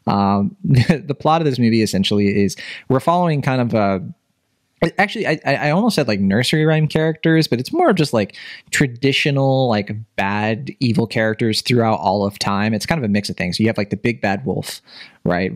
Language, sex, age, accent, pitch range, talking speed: English, male, 20-39, American, 100-135 Hz, 200 wpm